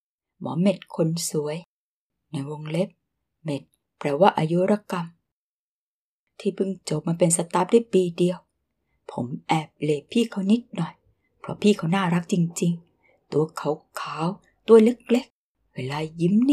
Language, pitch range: Thai, 165-210 Hz